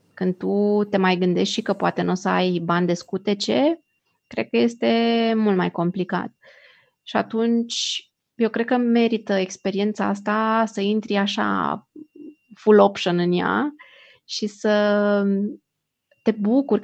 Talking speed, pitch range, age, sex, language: 145 wpm, 195-230 Hz, 20-39, female, Romanian